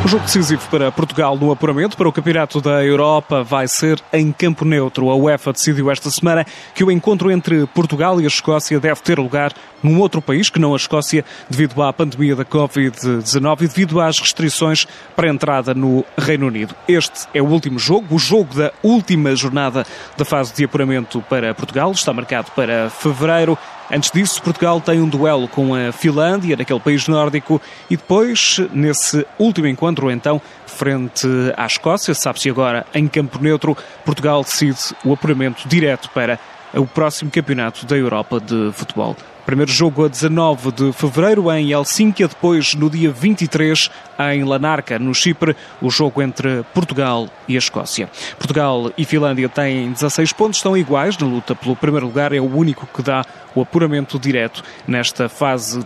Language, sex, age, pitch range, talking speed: Portuguese, male, 20-39, 135-160 Hz, 170 wpm